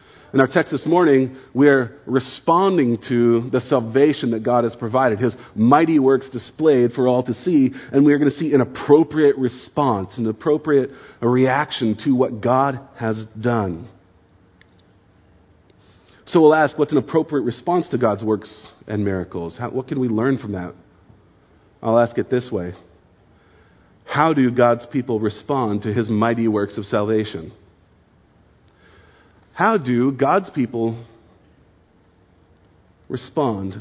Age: 40-59